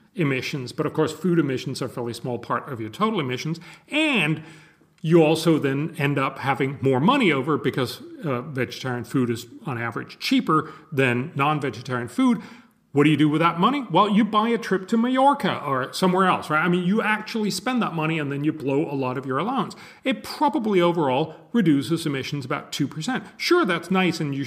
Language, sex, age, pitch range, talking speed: German, male, 40-59, 140-190 Hz, 200 wpm